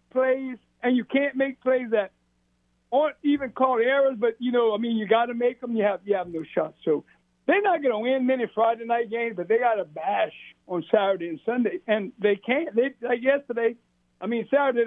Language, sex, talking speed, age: English, male, 220 wpm, 60-79